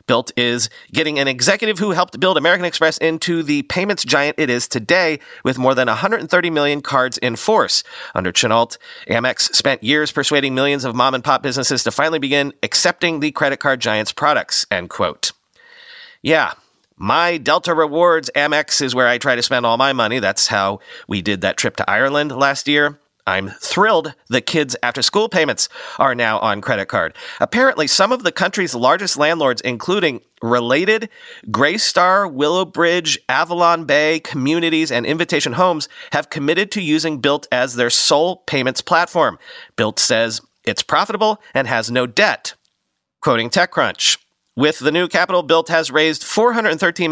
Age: 40-59